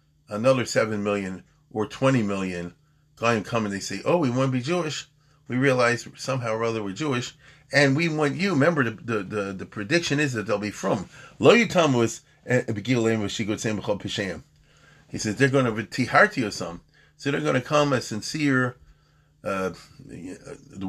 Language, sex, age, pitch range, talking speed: English, male, 40-59, 105-145 Hz, 165 wpm